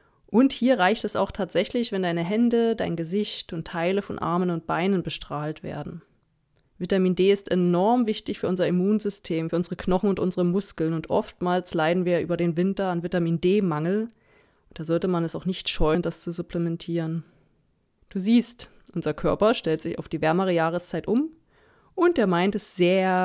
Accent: German